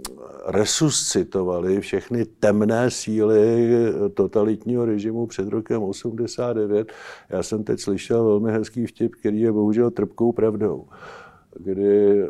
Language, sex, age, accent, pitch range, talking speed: Czech, male, 50-69, native, 100-120 Hz, 105 wpm